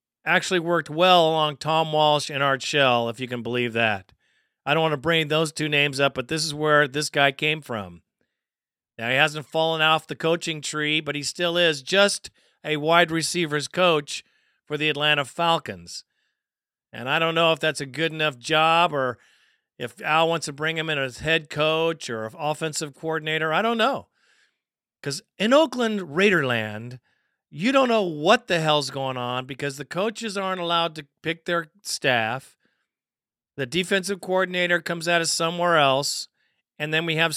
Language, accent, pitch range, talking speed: English, American, 140-165 Hz, 180 wpm